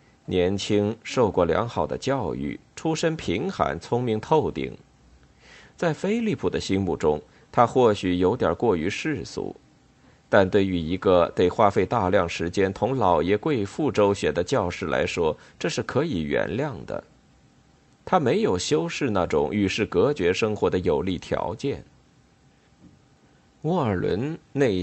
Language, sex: Chinese, male